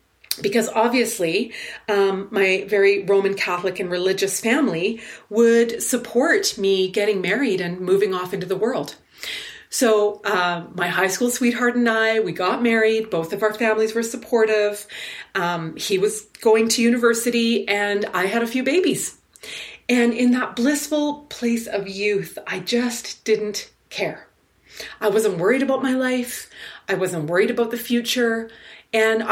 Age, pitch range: 30-49, 200-250 Hz